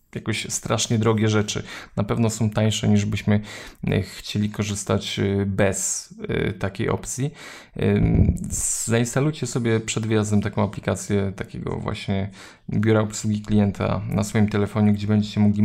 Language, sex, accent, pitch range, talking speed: Polish, male, native, 100-110 Hz, 125 wpm